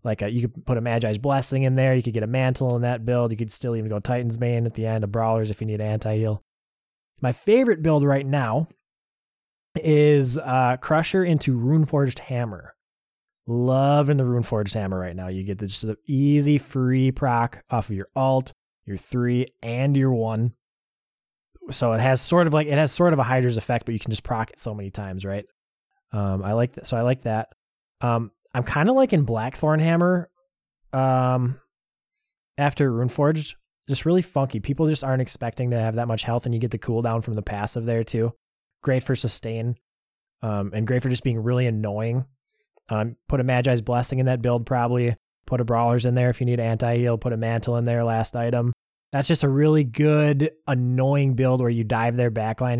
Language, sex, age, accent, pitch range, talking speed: English, male, 20-39, American, 115-135 Hz, 205 wpm